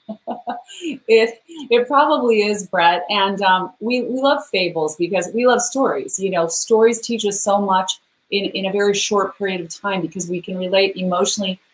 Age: 30-49